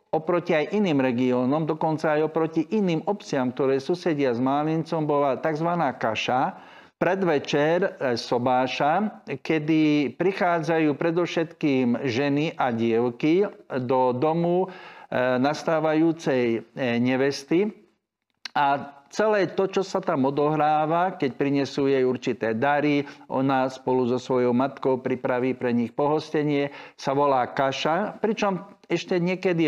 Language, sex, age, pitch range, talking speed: Slovak, male, 50-69, 130-170 Hz, 110 wpm